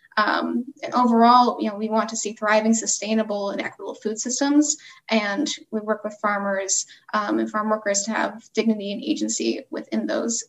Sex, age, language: female, 10-29, English